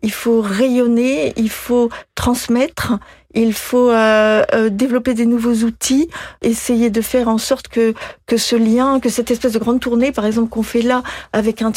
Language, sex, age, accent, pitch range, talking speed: French, female, 40-59, French, 220-250 Hz, 180 wpm